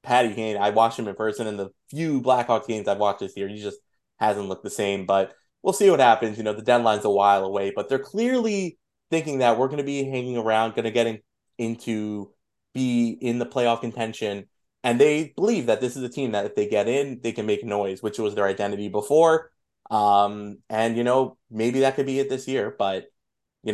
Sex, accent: male, American